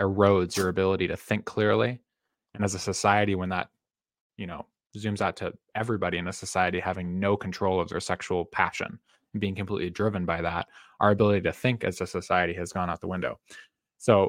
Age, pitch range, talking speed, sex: 20-39, 95-105 Hz, 195 wpm, male